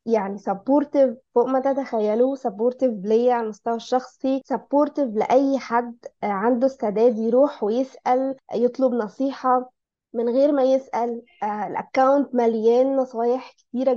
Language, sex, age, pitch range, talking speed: Arabic, female, 20-39, 235-275 Hz, 115 wpm